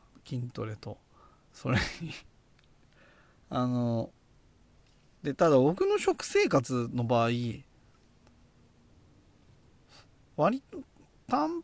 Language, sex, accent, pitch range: Japanese, male, native, 120-195 Hz